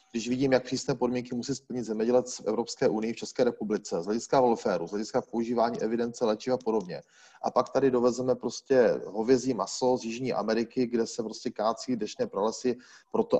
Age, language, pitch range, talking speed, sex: 30-49, Czech, 110-125 Hz, 185 wpm, male